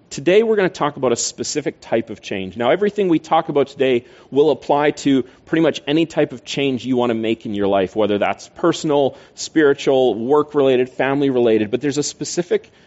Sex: male